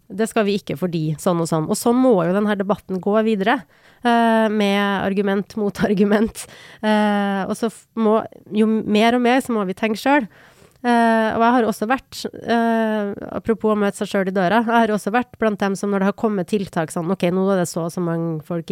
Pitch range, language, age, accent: 185-225 Hz, English, 30-49, Swedish